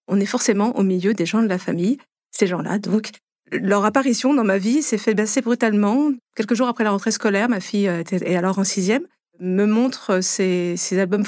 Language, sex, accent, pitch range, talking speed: French, female, French, 195-240 Hz, 205 wpm